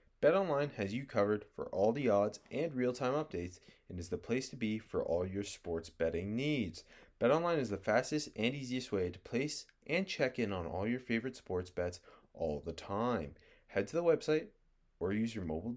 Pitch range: 90-135 Hz